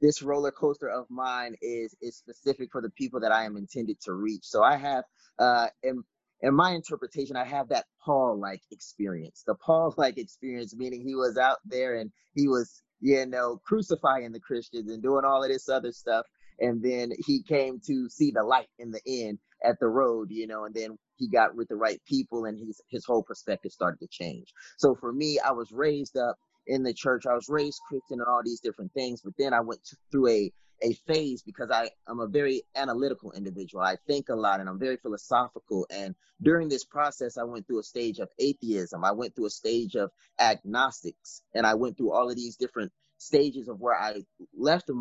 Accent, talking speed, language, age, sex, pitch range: American, 210 wpm, English, 20-39, male, 115-140 Hz